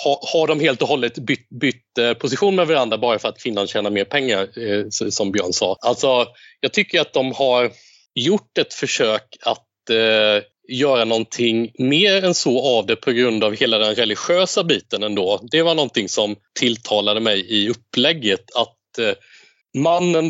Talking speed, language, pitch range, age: 175 wpm, Swedish, 105-145 Hz, 30-49